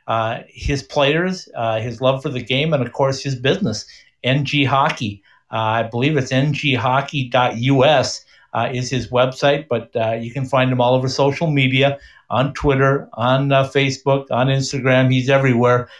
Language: English